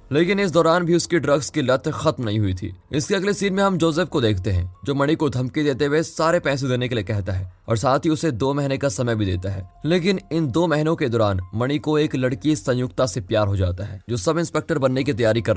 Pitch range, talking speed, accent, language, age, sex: 110-160 Hz, 260 wpm, native, Hindi, 20-39, male